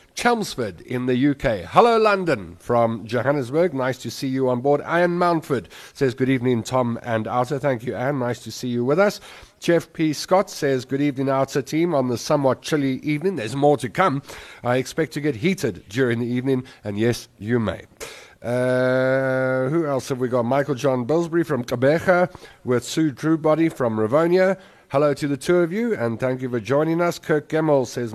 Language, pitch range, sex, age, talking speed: English, 125-155 Hz, male, 50-69, 195 wpm